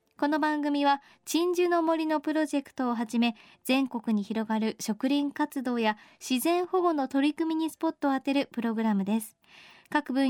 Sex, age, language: male, 20-39, Japanese